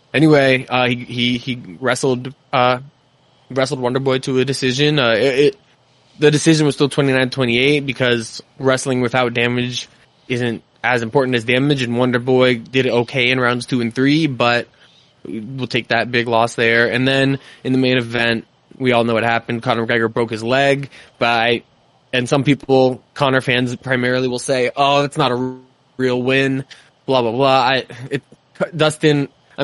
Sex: male